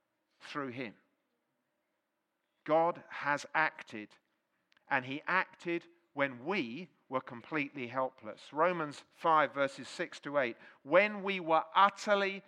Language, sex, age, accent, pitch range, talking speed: English, male, 50-69, British, 155-200 Hz, 110 wpm